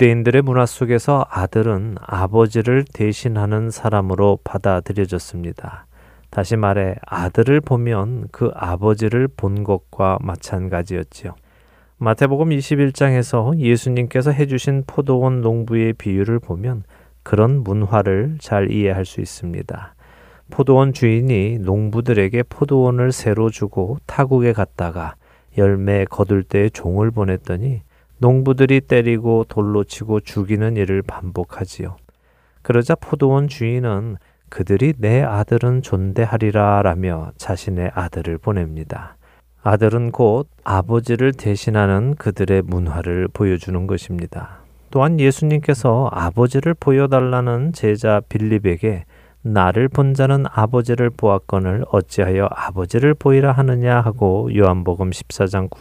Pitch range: 95-125 Hz